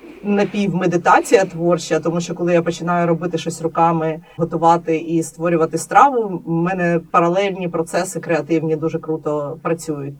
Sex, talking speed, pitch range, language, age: female, 130 wpm, 165-205 Hz, Ukrainian, 30-49